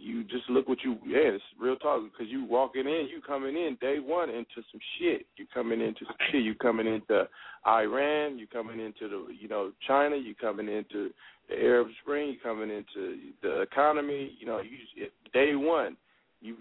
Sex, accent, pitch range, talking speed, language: male, American, 115-140 Hz, 200 wpm, English